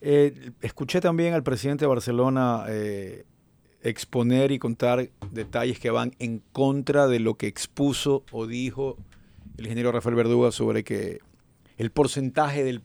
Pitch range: 115-135 Hz